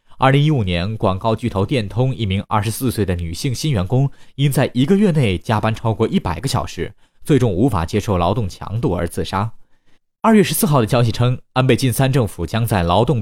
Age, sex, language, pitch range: 20-39, male, Chinese, 95-130 Hz